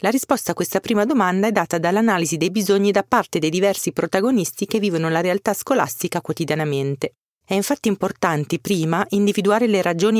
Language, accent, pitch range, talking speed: Italian, native, 160-205 Hz, 170 wpm